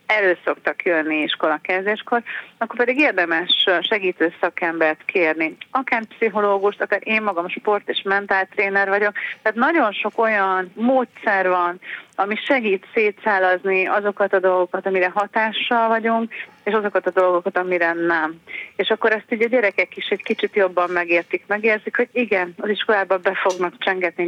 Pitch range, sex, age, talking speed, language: 180-225 Hz, female, 30-49, 145 wpm, Hungarian